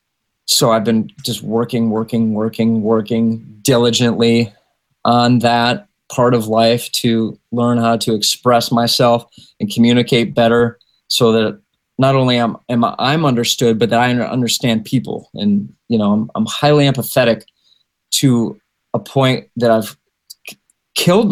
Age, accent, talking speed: 20-39, American, 140 wpm